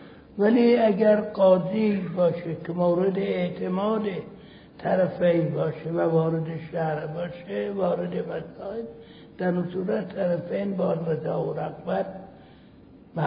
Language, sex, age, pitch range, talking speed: Persian, male, 60-79, 165-190 Hz, 120 wpm